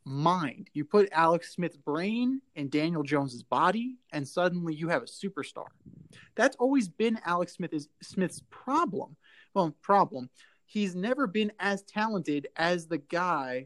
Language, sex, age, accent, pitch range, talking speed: English, male, 20-39, American, 150-200 Hz, 150 wpm